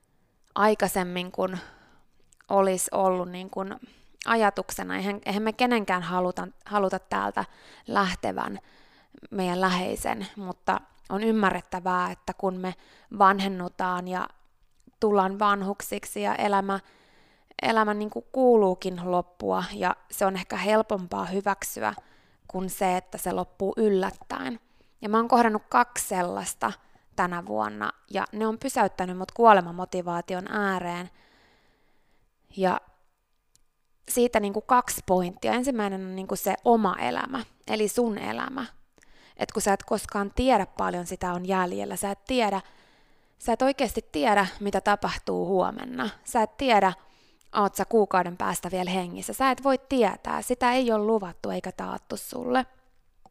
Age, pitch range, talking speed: 20-39, 185-220 Hz, 125 wpm